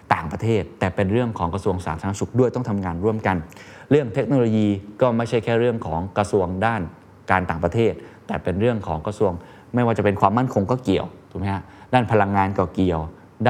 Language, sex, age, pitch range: Thai, male, 20-39, 95-115 Hz